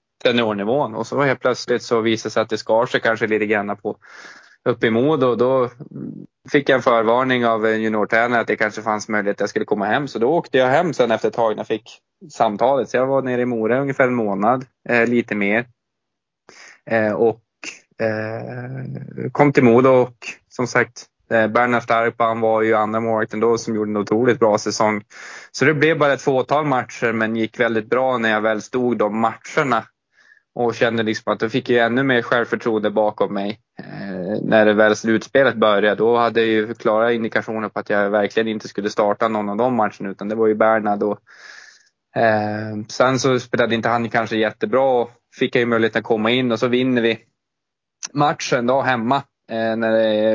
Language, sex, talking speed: Swedish, male, 205 wpm